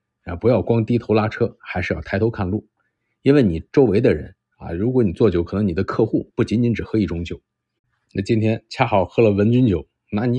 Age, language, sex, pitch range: 50-69, Chinese, male, 90-115 Hz